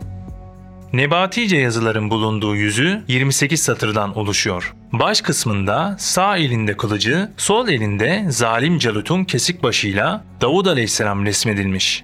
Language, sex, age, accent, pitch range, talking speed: Turkish, male, 30-49, native, 110-170 Hz, 105 wpm